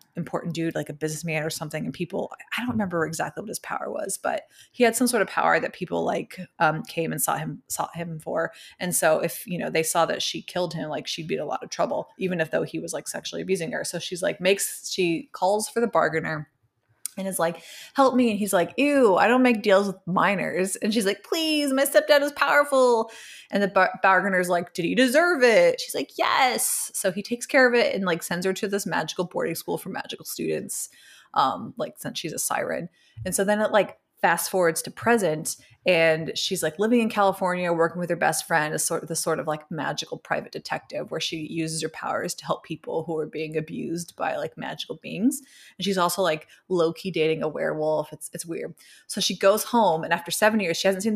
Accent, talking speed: American, 235 wpm